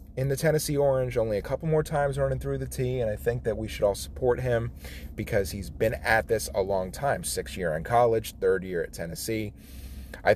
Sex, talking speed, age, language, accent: male, 220 wpm, 30-49, English, American